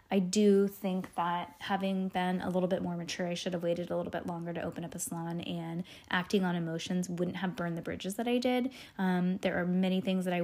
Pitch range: 170-200 Hz